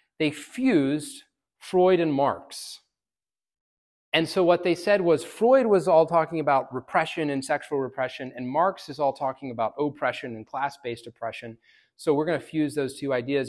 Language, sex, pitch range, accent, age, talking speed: English, male, 115-150 Hz, American, 30-49, 165 wpm